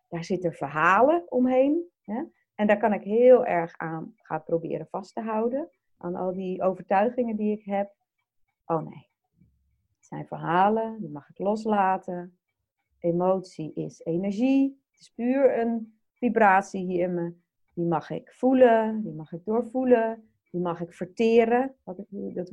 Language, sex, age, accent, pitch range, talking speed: Dutch, female, 40-59, Dutch, 175-235 Hz, 150 wpm